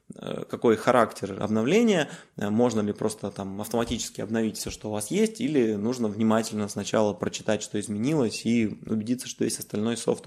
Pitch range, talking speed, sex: 105-120 Hz, 160 wpm, male